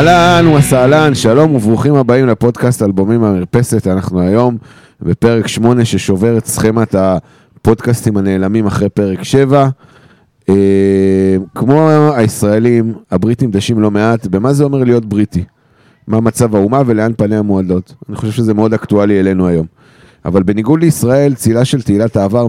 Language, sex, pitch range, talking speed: Hebrew, male, 100-125 Hz, 135 wpm